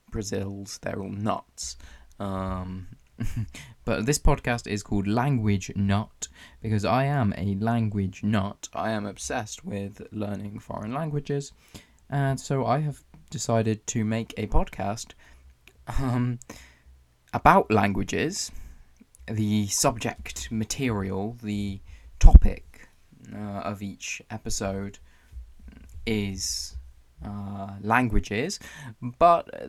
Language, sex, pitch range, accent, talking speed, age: English, male, 100-120 Hz, British, 100 wpm, 20-39